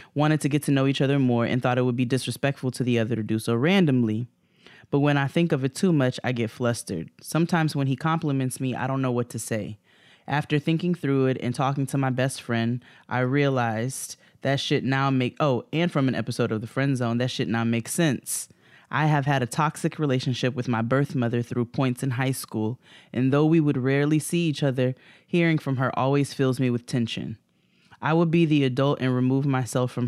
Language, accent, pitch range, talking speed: English, American, 120-140 Hz, 225 wpm